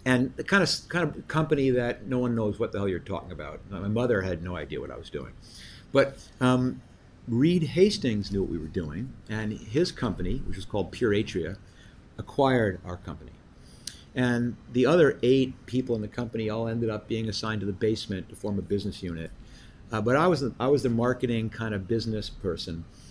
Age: 50-69